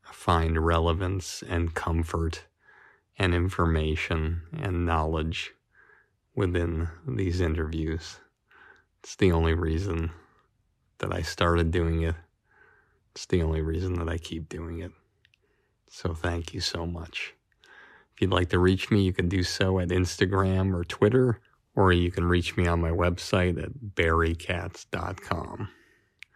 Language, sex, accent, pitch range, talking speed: English, male, American, 85-95 Hz, 130 wpm